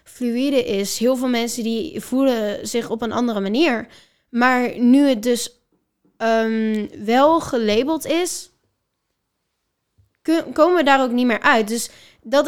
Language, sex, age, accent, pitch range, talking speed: Dutch, female, 10-29, Dutch, 215-265 Hz, 145 wpm